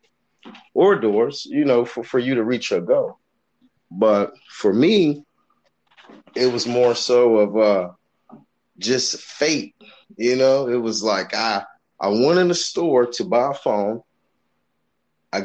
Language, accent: English, American